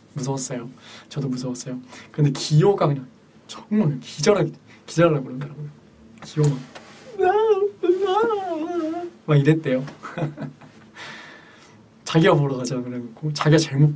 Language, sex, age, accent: Korean, male, 20-39, native